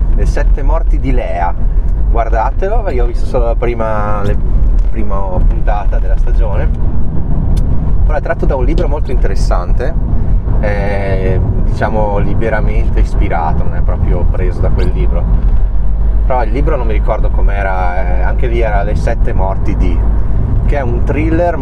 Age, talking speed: 30-49, 150 wpm